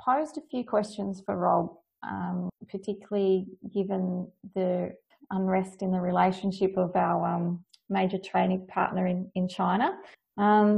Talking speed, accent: 135 wpm, Australian